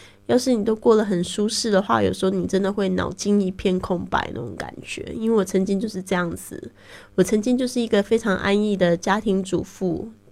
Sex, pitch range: female, 165-200 Hz